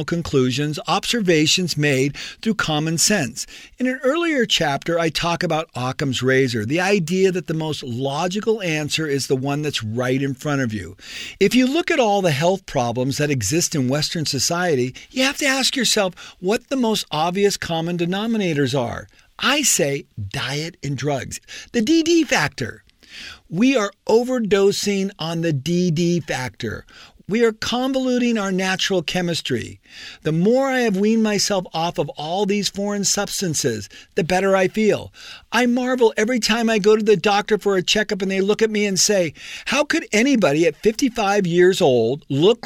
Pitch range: 145-220 Hz